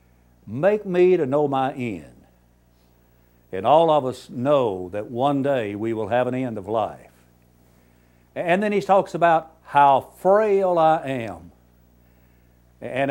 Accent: American